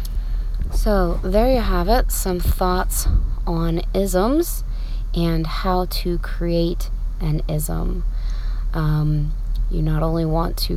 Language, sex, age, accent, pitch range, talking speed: English, female, 30-49, American, 145-175 Hz, 115 wpm